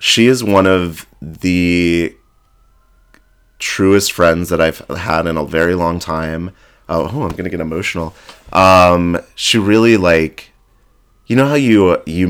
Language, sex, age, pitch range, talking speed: English, male, 30-49, 85-105 Hz, 150 wpm